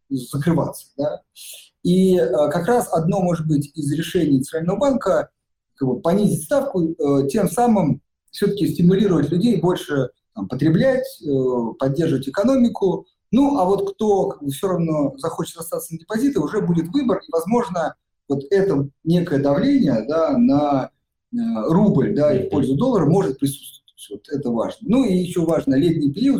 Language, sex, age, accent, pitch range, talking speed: Russian, male, 50-69, native, 140-195 Hz, 130 wpm